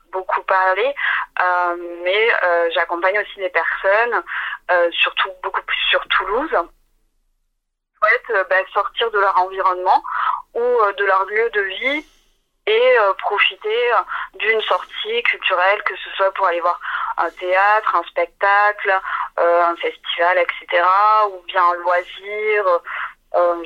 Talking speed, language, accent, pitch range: 140 wpm, French, French, 180-220 Hz